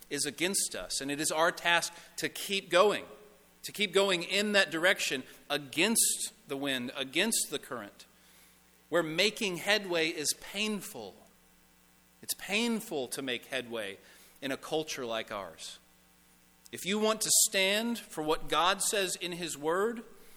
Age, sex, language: 40-59, male, English